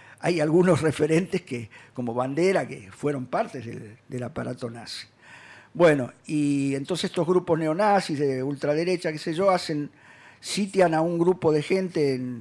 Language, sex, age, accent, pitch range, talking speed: Spanish, male, 50-69, Argentinian, 130-170 Hz, 155 wpm